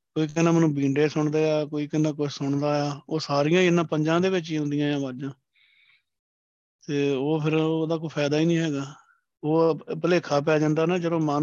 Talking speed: 175 wpm